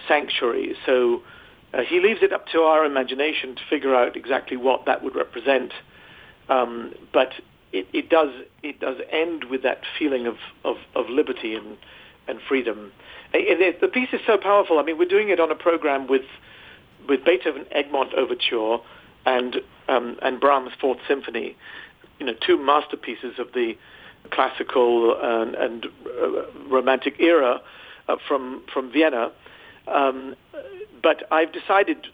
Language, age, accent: English, 50-69, British